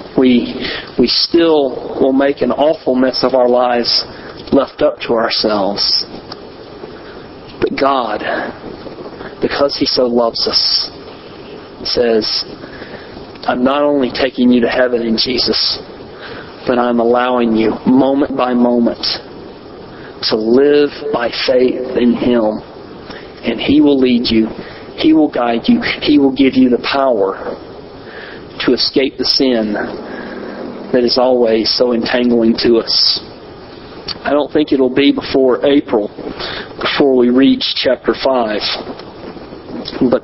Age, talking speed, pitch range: 40-59, 125 wpm, 120-140 Hz